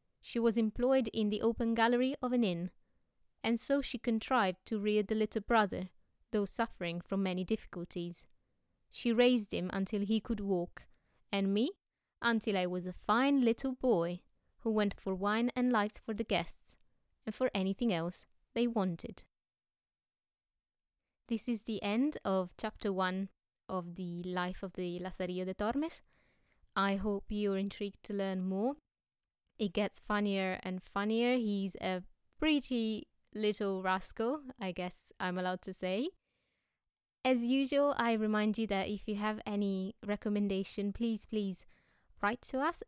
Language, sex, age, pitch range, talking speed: English, female, 20-39, 190-230 Hz, 155 wpm